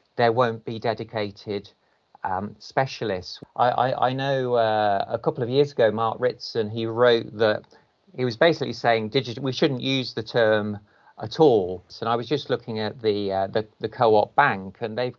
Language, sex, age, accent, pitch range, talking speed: English, male, 40-59, British, 105-125 Hz, 185 wpm